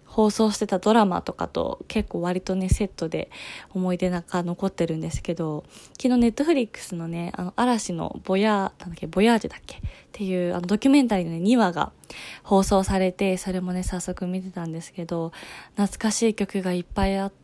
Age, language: 20-39, Japanese